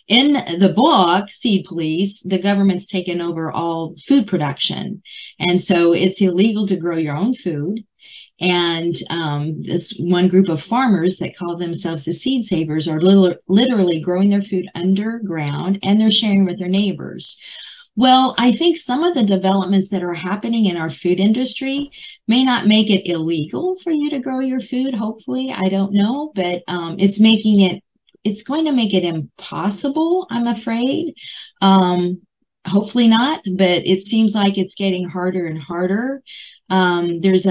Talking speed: 165 wpm